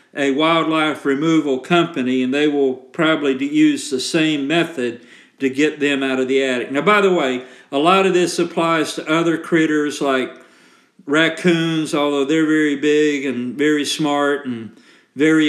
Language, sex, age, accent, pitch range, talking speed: English, male, 50-69, American, 135-165 Hz, 165 wpm